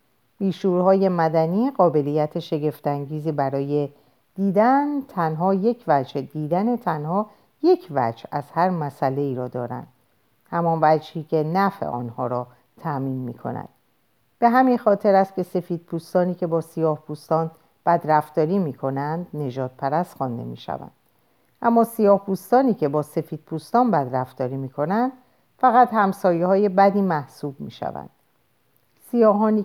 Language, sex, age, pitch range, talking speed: Persian, female, 50-69, 145-190 Hz, 130 wpm